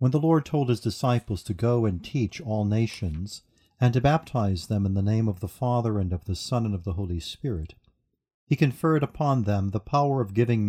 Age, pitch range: 50-69, 100-130 Hz